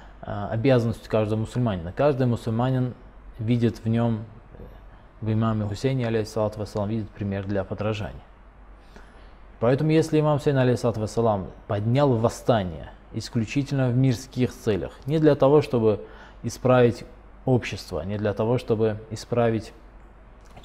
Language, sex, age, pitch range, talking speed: Russian, male, 20-39, 105-130 Hz, 110 wpm